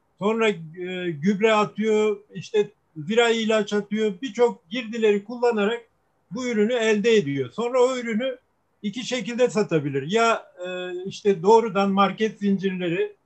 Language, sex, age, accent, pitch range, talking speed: Turkish, male, 50-69, native, 180-220 Hz, 115 wpm